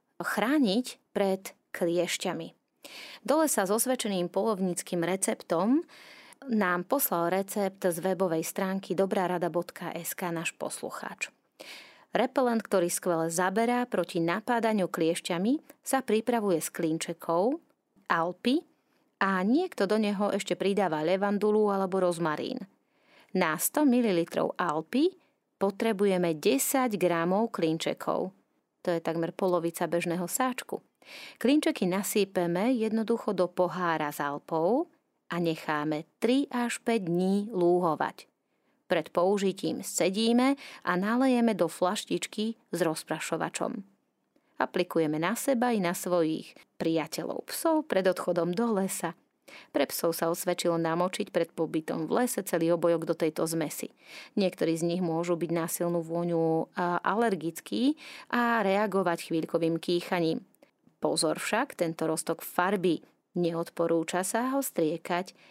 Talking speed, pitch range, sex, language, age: 115 wpm, 170-225 Hz, female, Slovak, 30-49